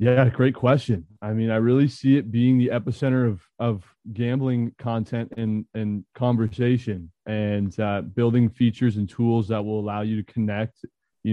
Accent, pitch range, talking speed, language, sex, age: American, 110-120 Hz, 170 wpm, English, male, 20-39